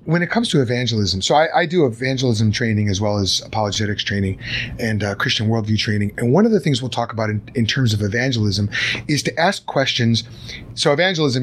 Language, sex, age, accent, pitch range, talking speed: English, male, 30-49, American, 115-150 Hz, 210 wpm